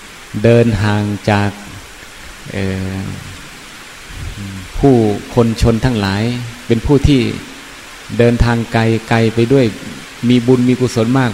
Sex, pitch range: male, 100-120 Hz